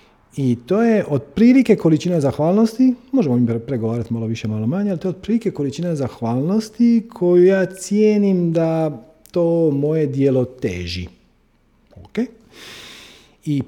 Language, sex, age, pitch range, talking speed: Croatian, male, 40-59, 115-175 Hz, 125 wpm